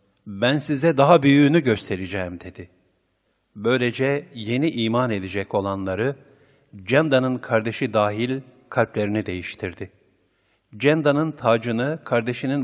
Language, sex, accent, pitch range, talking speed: Turkish, male, native, 100-135 Hz, 90 wpm